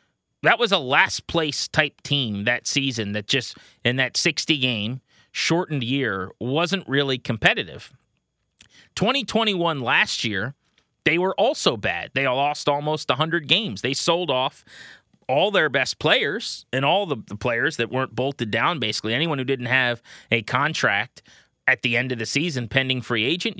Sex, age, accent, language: male, 30-49, American, English